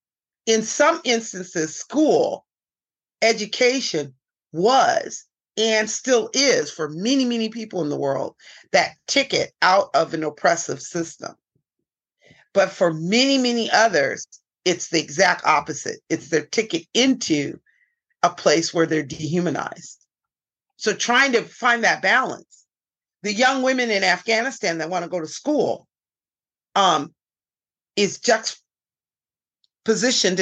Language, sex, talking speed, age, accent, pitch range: English, female, 120 wpm, 40-59, American, 165-225 Hz